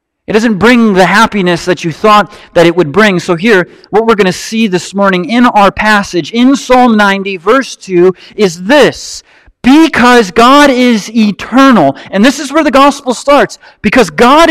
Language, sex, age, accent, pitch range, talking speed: English, male, 40-59, American, 175-245 Hz, 180 wpm